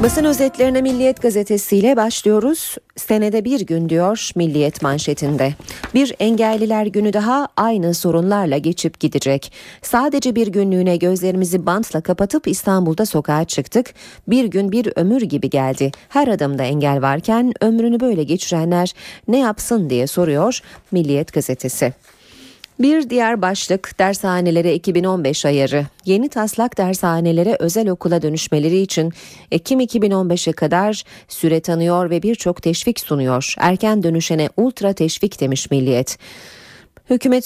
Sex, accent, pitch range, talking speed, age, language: female, native, 155-210 Hz, 120 wpm, 30-49, Turkish